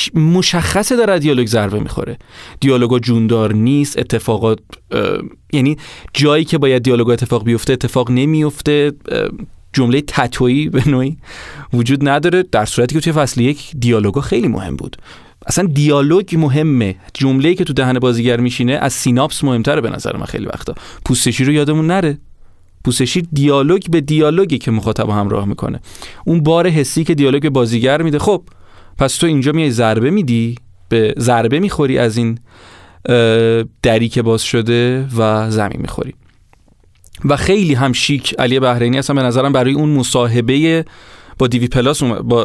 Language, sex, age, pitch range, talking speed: Persian, male, 30-49, 115-150 Hz, 145 wpm